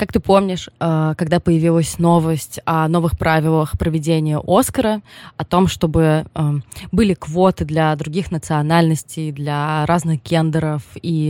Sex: female